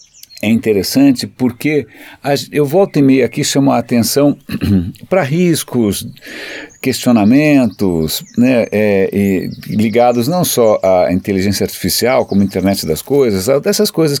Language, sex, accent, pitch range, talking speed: Portuguese, male, Brazilian, 105-150 Hz, 125 wpm